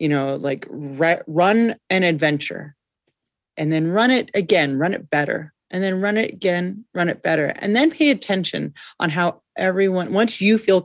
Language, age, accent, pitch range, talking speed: English, 30-49, American, 150-210 Hz, 185 wpm